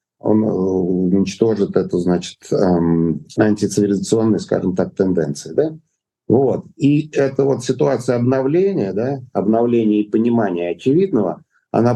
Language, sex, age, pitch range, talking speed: Russian, male, 50-69, 105-130 Hz, 105 wpm